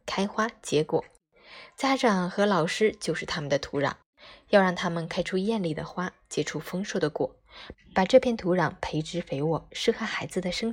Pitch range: 155-200 Hz